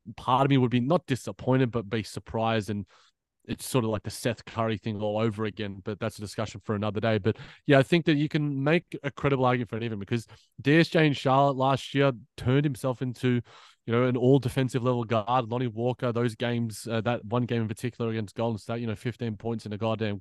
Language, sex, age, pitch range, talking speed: English, male, 20-39, 110-130 Hz, 235 wpm